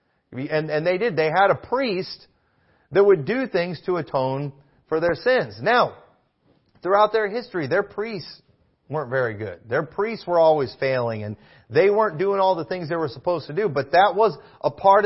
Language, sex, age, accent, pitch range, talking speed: English, male, 40-59, American, 145-205 Hz, 190 wpm